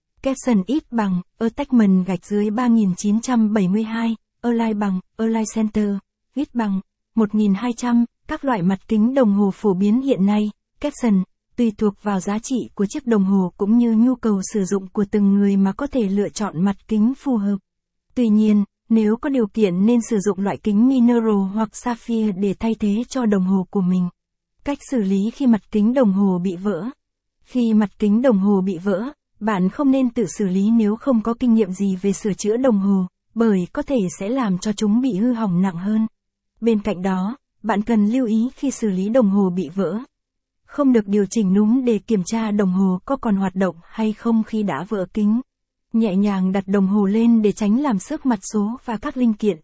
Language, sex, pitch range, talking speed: Vietnamese, female, 200-235 Hz, 210 wpm